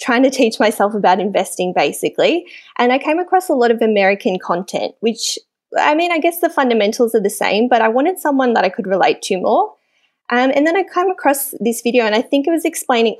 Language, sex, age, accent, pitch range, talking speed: English, female, 20-39, Australian, 205-255 Hz, 225 wpm